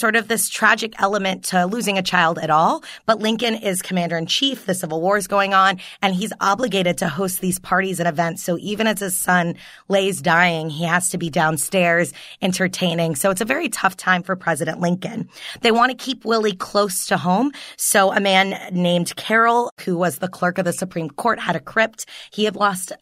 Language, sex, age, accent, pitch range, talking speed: English, female, 20-39, American, 180-210 Hz, 210 wpm